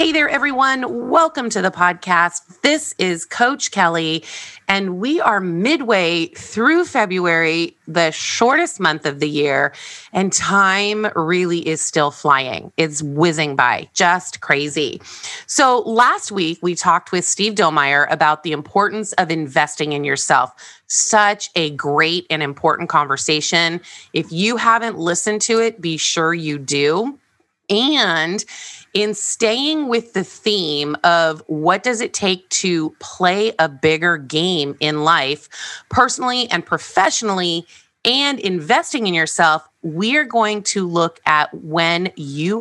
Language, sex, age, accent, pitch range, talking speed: English, female, 30-49, American, 160-225 Hz, 135 wpm